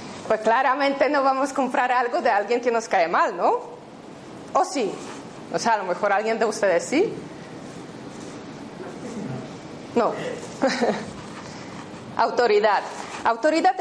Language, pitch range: Spanish, 230-295 Hz